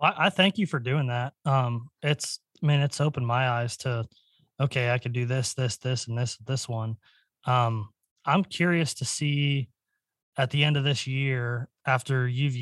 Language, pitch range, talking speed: English, 120-140 Hz, 185 wpm